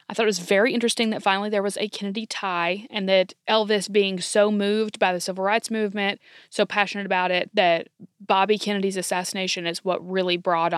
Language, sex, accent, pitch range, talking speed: English, female, American, 180-215 Hz, 200 wpm